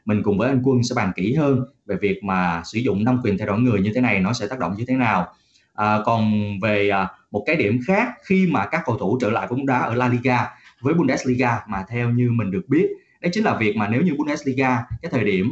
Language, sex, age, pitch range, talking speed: Vietnamese, male, 20-39, 100-130 Hz, 255 wpm